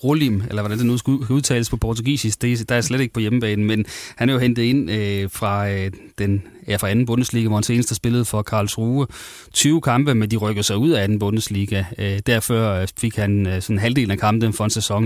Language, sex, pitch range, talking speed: Danish, male, 105-120 Hz, 215 wpm